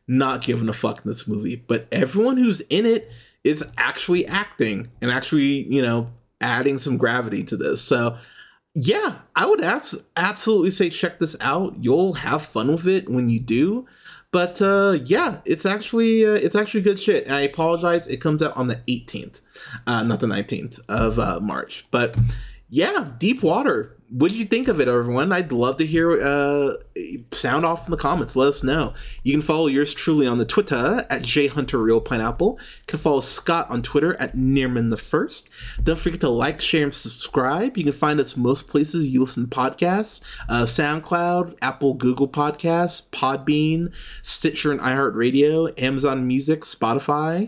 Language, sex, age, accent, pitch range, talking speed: English, male, 20-39, American, 125-175 Hz, 175 wpm